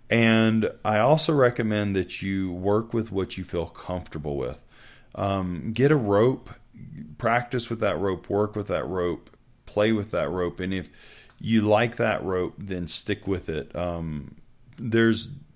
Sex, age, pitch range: male, 30-49, 90-110 Hz